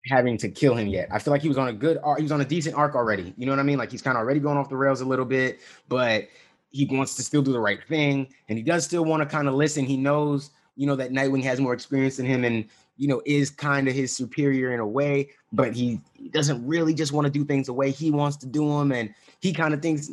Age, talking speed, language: 20-39, 290 wpm, English